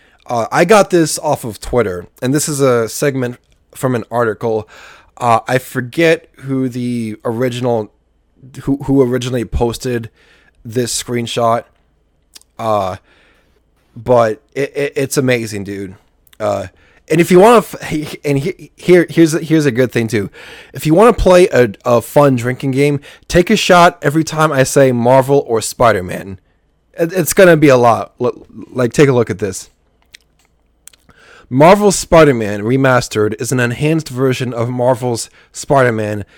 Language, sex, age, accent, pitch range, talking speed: English, male, 20-39, American, 115-145 Hz, 155 wpm